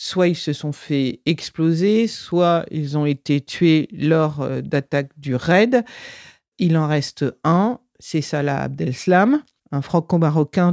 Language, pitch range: French, 150-190 Hz